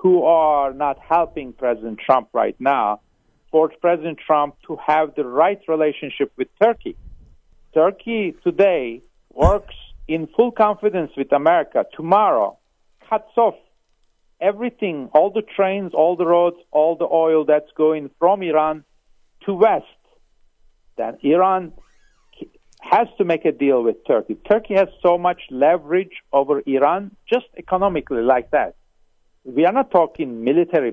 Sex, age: male, 50-69